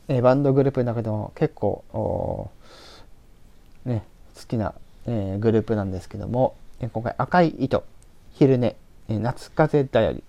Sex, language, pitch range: male, Japanese, 105-135 Hz